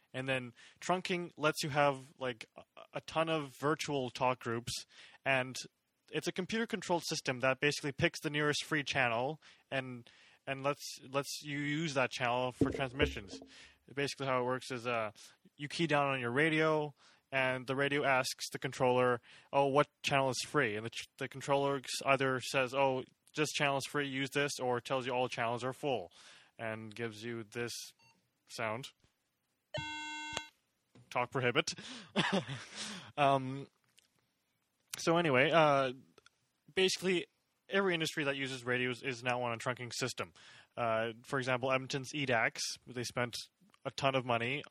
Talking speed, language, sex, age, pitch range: 150 wpm, English, male, 20-39, 125-145 Hz